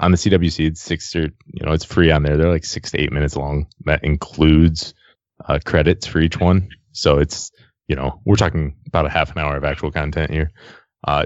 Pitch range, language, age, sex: 80-95 Hz, English, 20-39, male